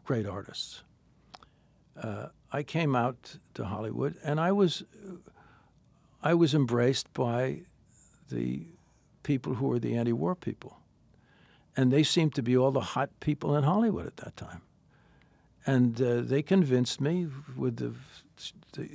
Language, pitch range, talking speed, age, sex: English, 120-155 Hz, 140 wpm, 60-79, male